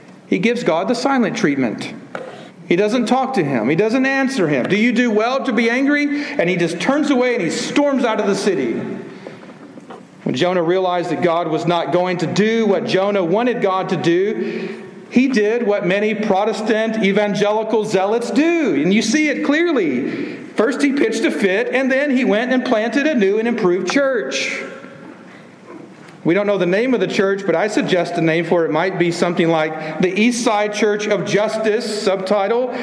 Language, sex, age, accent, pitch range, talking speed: English, male, 50-69, American, 175-240 Hz, 195 wpm